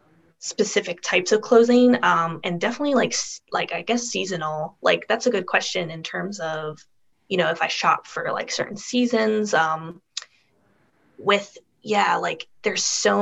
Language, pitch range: English, 155-195 Hz